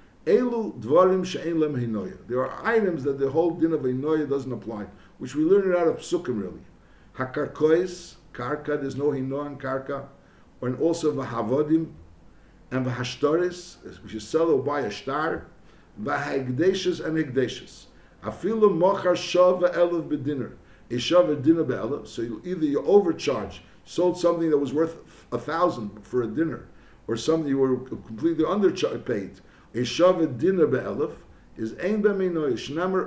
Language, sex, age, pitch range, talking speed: English, male, 60-79, 135-170 Hz, 125 wpm